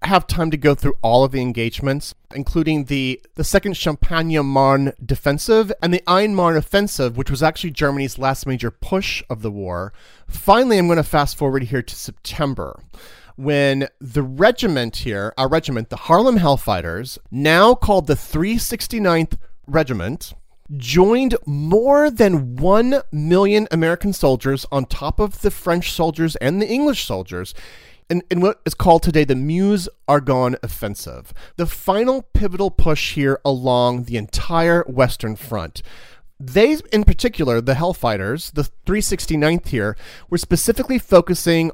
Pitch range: 130-185 Hz